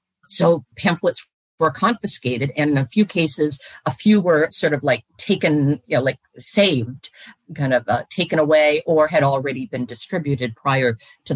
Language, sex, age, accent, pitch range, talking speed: English, female, 50-69, American, 135-165 Hz, 170 wpm